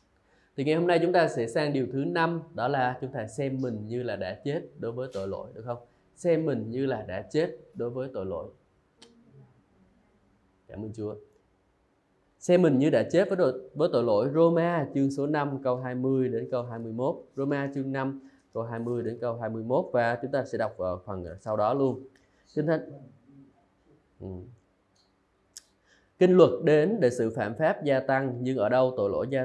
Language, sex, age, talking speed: Vietnamese, male, 20-39, 185 wpm